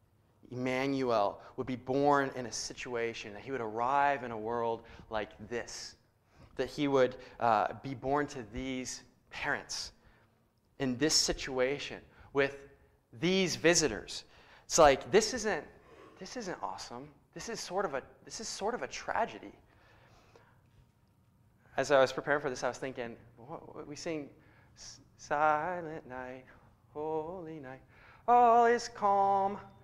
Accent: American